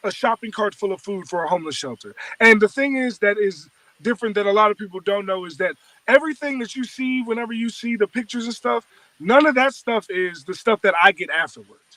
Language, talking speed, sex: Spanish, 240 wpm, male